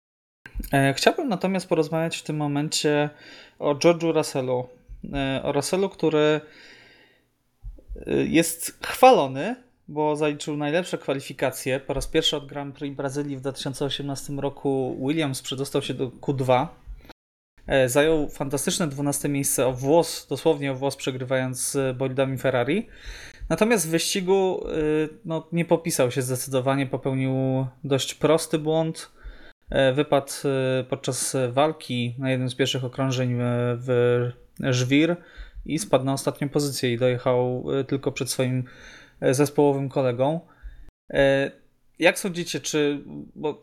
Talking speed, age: 115 wpm, 20-39